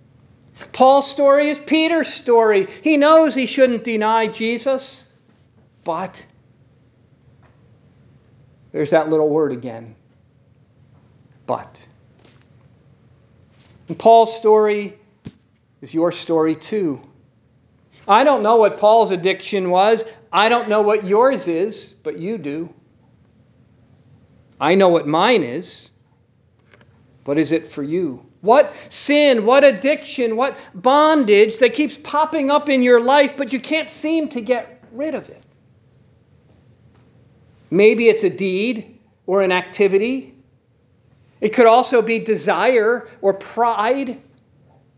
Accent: American